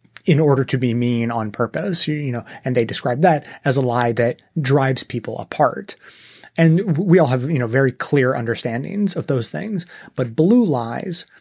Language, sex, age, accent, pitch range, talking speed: English, male, 30-49, American, 125-160 Hz, 185 wpm